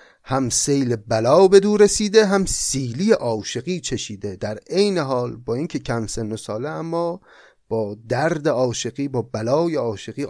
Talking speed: 150 wpm